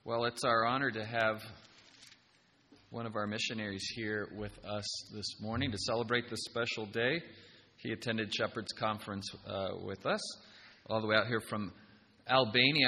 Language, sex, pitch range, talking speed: English, male, 105-125 Hz, 160 wpm